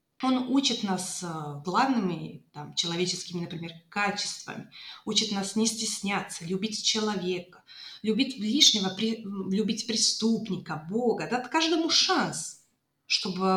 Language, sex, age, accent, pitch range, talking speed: Russian, female, 30-49, native, 180-225 Hz, 100 wpm